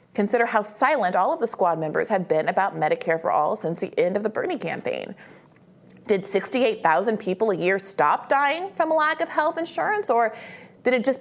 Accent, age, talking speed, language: American, 30-49, 205 wpm, English